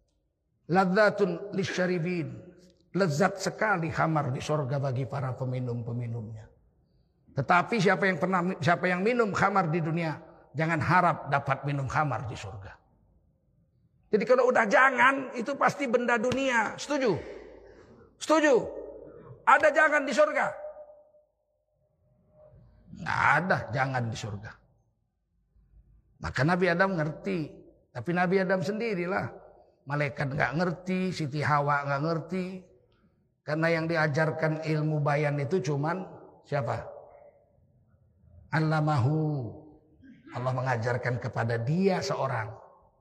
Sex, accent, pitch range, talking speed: male, native, 130-215 Hz, 100 wpm